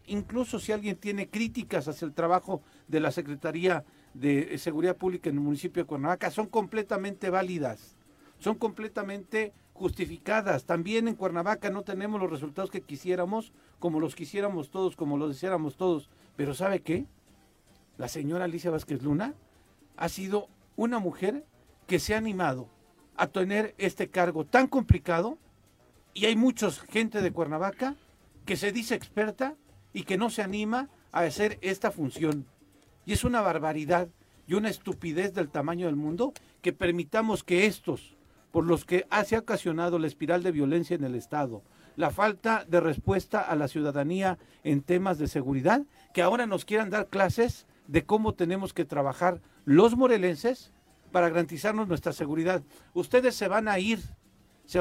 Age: 50-69